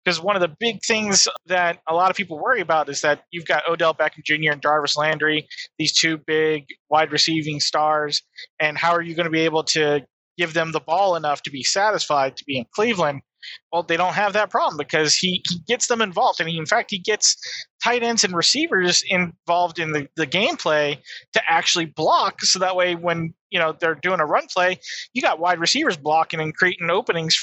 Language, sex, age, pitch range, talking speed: English, male, 20-39, 150-180 Hz, 215 wpm